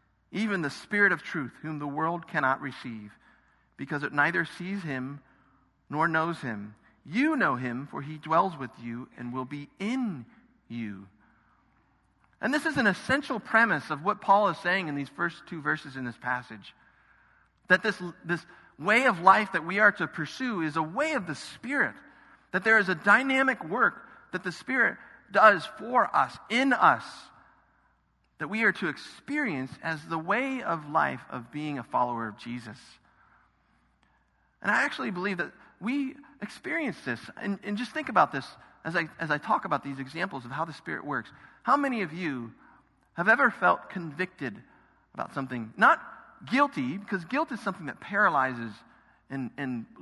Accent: American